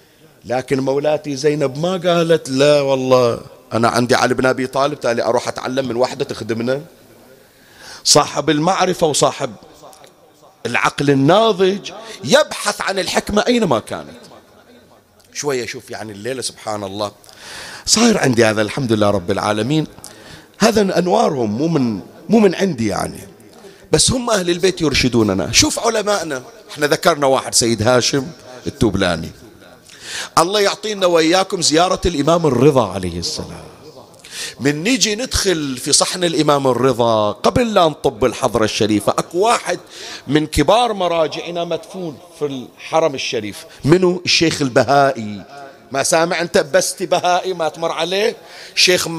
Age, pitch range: 40-59, 130-190 Hz